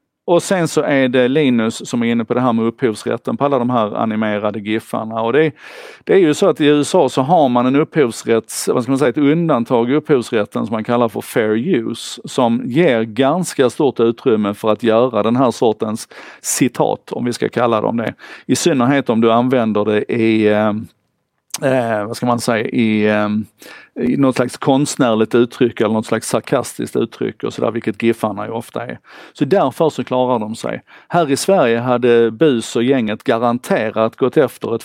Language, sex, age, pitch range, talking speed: Swedish, male, 50-69, 110-135 Hz, 200 wpm